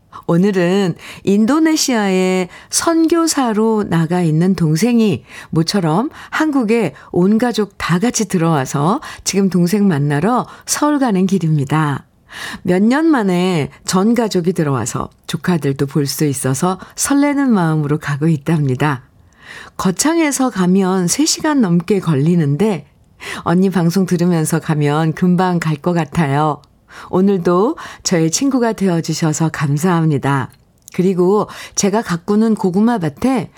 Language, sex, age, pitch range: Korean, female, 50-69, 165-230 Hz